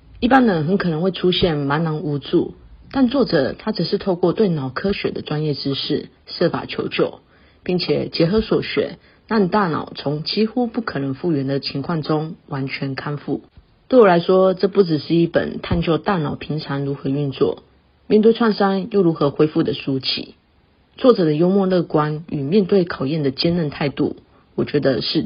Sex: female